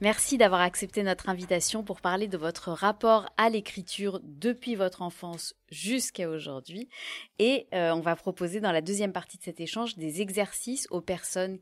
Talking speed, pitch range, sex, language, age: 170 wpm, 165-210 Hz, female, French, 30-49